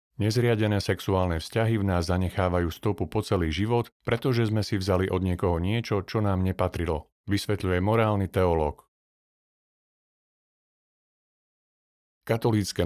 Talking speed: 110 wpm